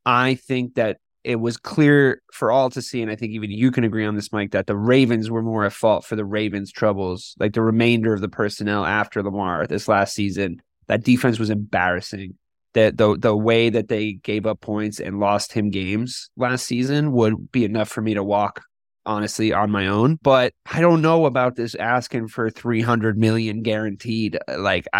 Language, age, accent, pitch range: English, 20-39, American, 105-125 Hz